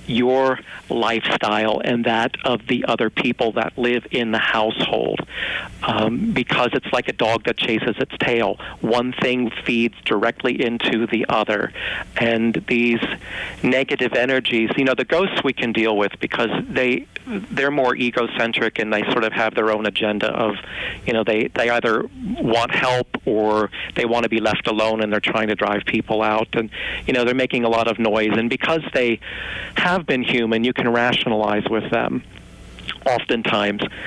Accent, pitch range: American, 110-125 Hz